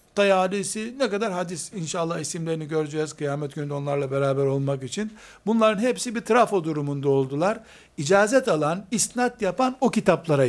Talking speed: 145 wpm